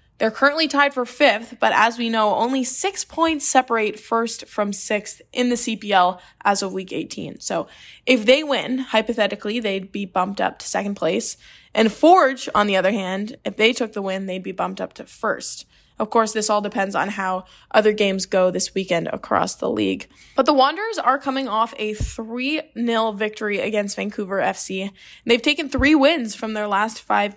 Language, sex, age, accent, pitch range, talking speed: English, female, 10-29, American, 200-255 Hz, 190 wpm